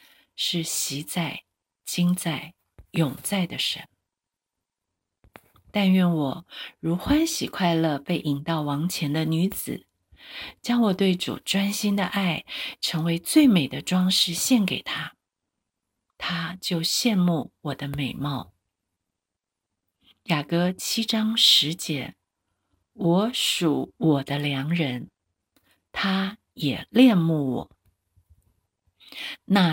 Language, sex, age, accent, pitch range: Chinese, female, 50-69, native, 140-200 Hz